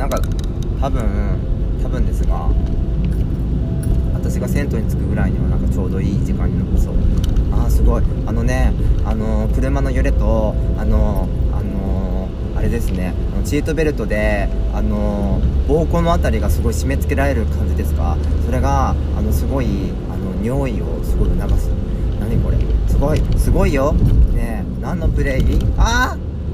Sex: male